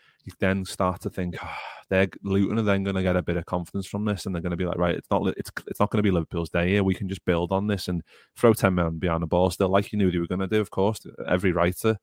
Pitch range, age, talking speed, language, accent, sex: 90-100 Hz, 30-49, 320 wpm, English, British, male